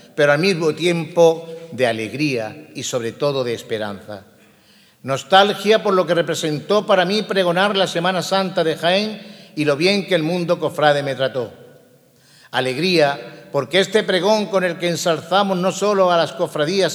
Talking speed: 165 wpm